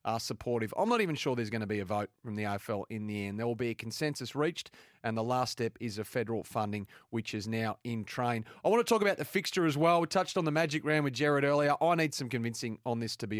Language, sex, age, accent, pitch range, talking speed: English, male, 30-49, Australian, 115-145 Hz, 280 wpm